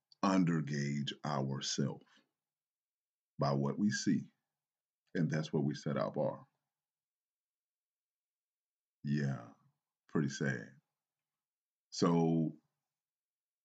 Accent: American